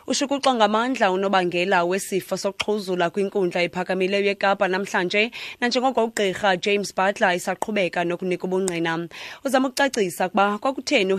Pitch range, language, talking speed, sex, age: 180-215 Hz, English, 120 wpm, female, 20-39